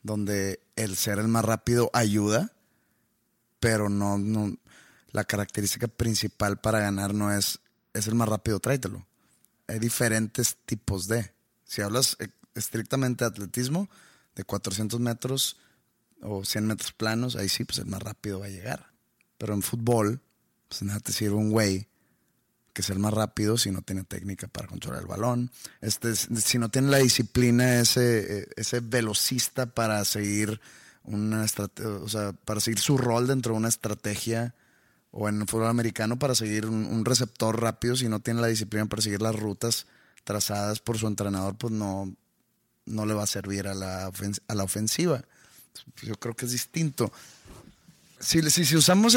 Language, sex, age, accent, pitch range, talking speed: Spanish, male, 30-49, Mexican, 105-120 Hz, 165 wpm